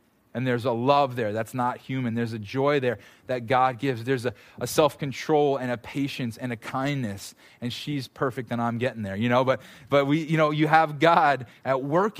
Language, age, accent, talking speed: English, 20-39, American, 215 wpm